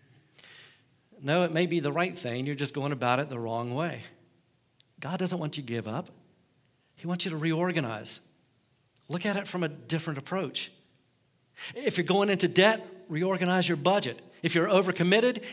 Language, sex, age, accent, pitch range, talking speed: English, male, 50-69, American, 140-195 Hz, 175 wpm